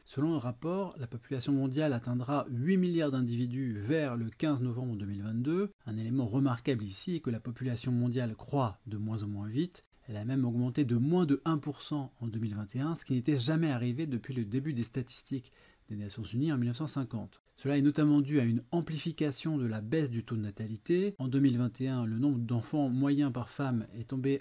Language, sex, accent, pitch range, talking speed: French, male, French, 115-145 Hz, 195 wpm